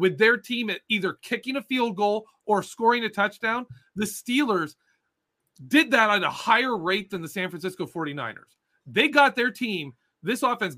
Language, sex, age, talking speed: English, male, 30-49, 180 wpm